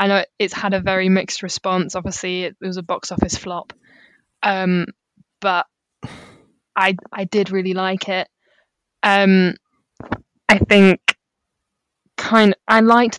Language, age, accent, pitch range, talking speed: English, 10-29, British, 180-205 Hz, 135 wpm